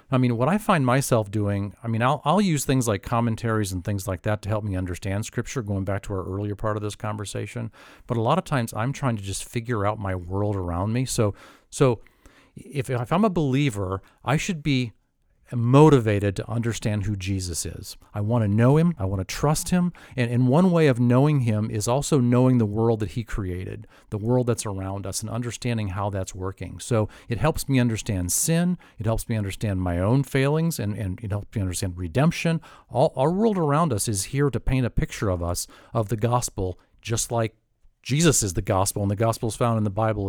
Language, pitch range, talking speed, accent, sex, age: English, 105-135 Hz, 220 wpm, American, male, 40-59